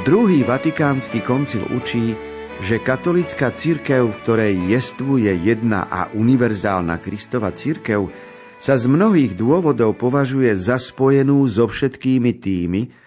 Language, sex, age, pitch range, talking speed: Slovak, male, 40-59, 100-135 Hz, 115 wpm